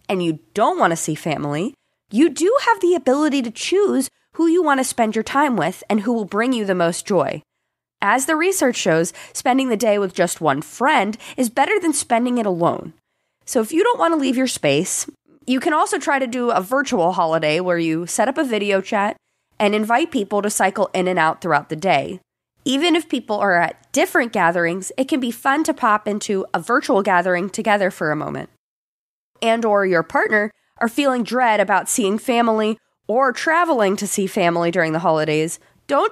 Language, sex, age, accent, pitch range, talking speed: English, female, 20-39, American, 185-275 Hz, 205 wpm